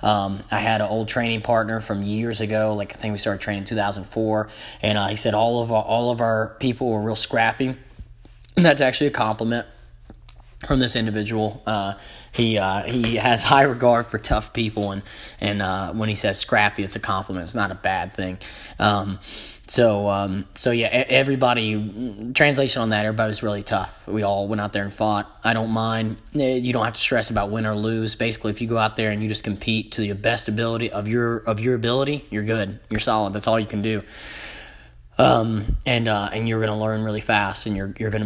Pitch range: 105-115 Hz